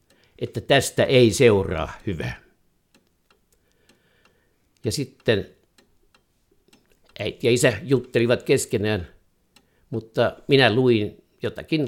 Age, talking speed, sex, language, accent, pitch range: 60-79, 80 wpm, male, Finnish, native, 100-130 Hz